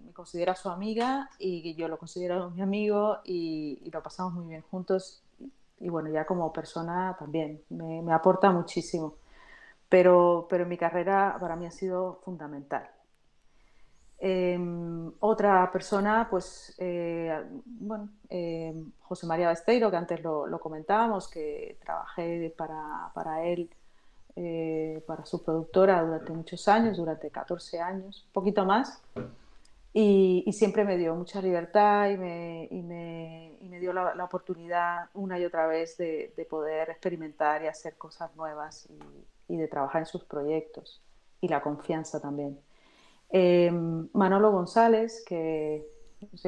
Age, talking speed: 30-49, 150 wpm